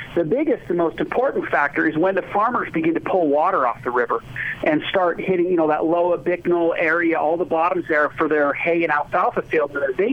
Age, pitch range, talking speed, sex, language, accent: 50-69, 160-190 Hz, 225 wpm, male, English, American